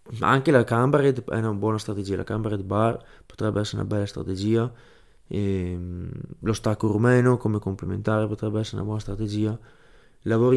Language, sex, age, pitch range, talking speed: Italian, male, 20-39, 95-115 Hz, 155 wpm